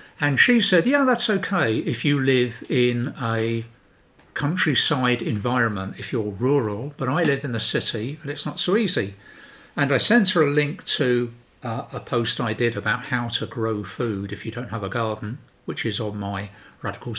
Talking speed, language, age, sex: 190 wpm, English, 50-69, male